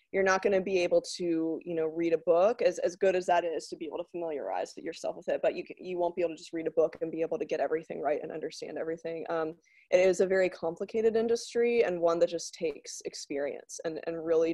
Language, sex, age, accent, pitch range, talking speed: English, female, 20-39, American, 165-210 Hz, 265 wpm